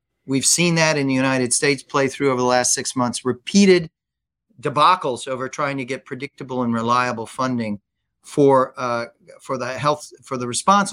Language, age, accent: English, 40-59, American